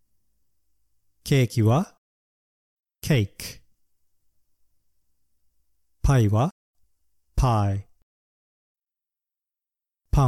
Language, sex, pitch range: Japanese, male, 85-125 Hz